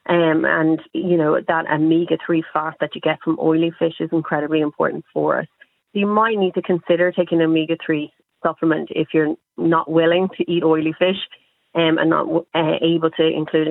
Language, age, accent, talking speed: English, 30-49, Irish, 180 wpm